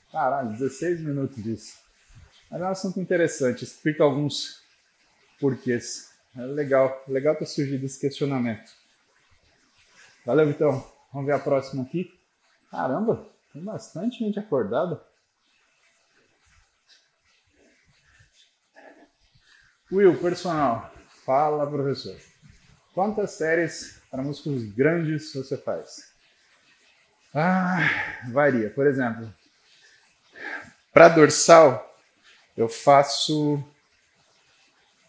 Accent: Brazilian